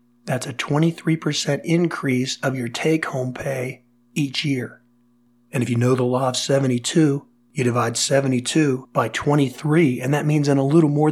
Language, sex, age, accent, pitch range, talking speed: English, male, 40-59, American, 120-145 Hz, 160 wpm